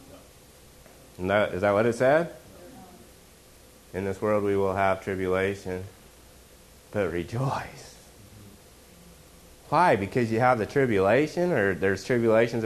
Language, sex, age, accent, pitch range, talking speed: English, male, 30-49, American, 85-115 Hz, 110 wpm